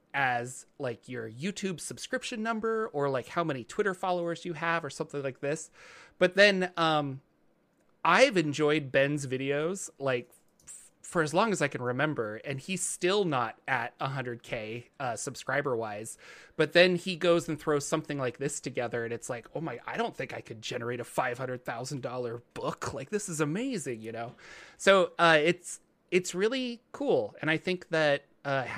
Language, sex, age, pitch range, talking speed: English, male, 30-49, 130-170 Hz, 175 wpm